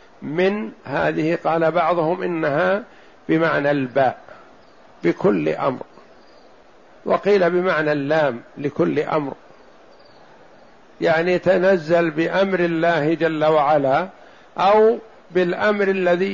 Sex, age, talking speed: male, 60-79, 85 wpm